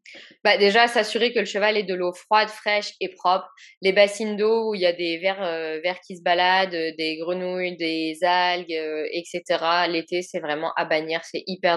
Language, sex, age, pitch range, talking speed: French, female, 20-39, 165-195 Hz, 205 wpm